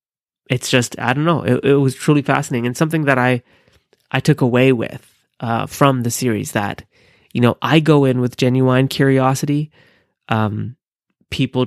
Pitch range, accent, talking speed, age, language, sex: 120-155 Hz, American, 170 wpm, 30-49, English, male